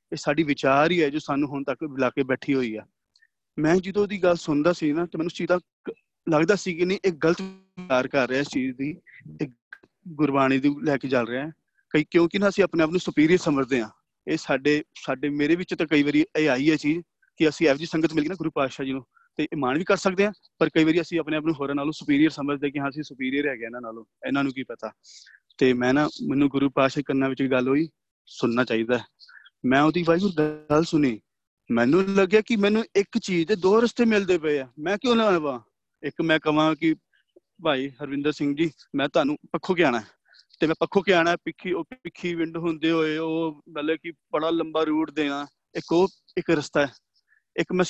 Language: Punjabi